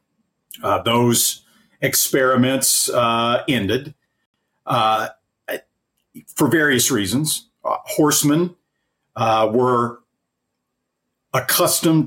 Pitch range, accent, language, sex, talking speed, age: 105-130 Hz, American, English, male, 70 wpm, 50-69